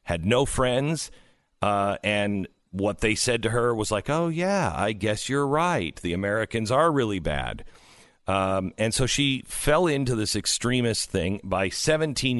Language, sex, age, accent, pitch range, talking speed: English, male, 40-59, American, 100-135 Hz, 165 wpm